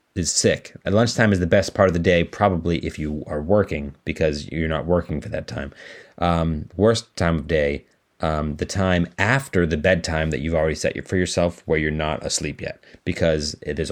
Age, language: 30-49, English